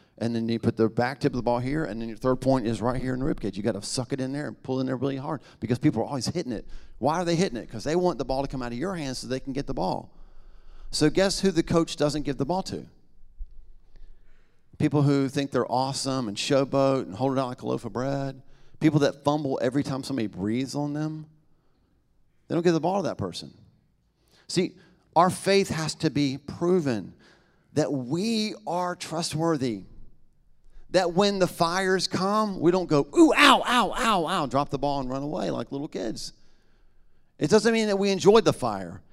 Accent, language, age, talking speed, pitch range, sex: American, English, 40-59, 225 wpm, 135-180 Hz, male